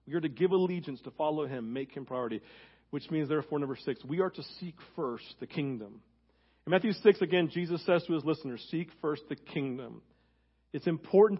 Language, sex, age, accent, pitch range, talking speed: English, male, 40-59, American, 125-180 Hz, 195 wpm